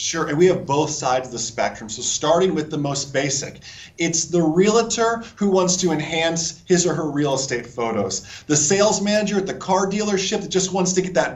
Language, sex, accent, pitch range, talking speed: English, male, American, 150-195 Hz, 215 wpm